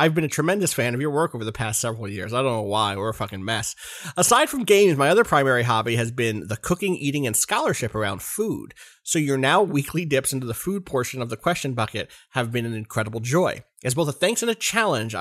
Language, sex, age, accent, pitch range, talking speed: English, male, 30-49, American, 115-160 Hz, 245 wpm